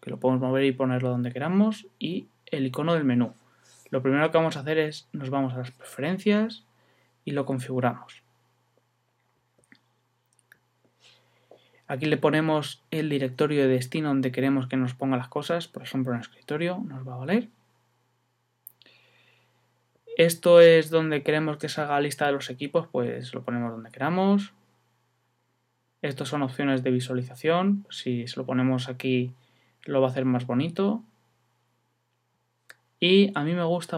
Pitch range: 130-165 Hz